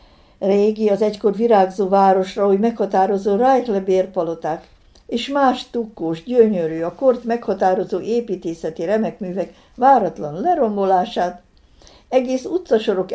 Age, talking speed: 60-79, 95 wpm